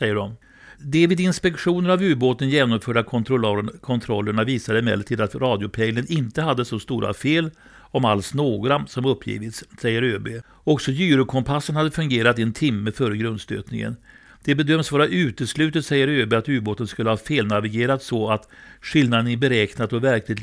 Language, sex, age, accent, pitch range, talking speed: Swedish, male, 60-79, native, 110-135 Hz, 155 wpm